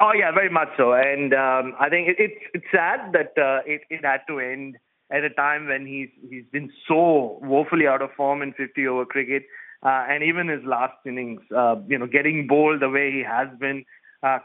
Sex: male